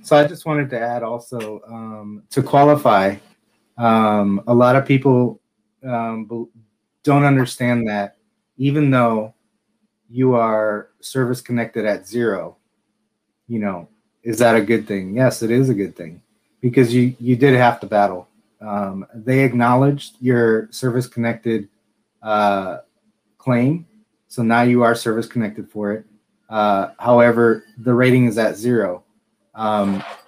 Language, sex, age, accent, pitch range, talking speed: English, male, 30-49, American, 105-120 Hz, 135 wpm